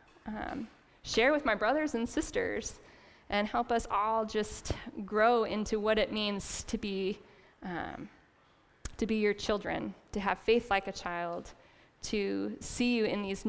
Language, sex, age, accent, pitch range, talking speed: English, female, 10-29, American, 200-230 Hz, 150 wpm